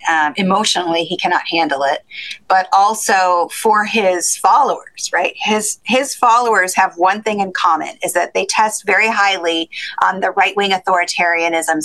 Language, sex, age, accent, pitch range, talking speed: English, female, 30-49, American, 170-210 Hz, 150 wpm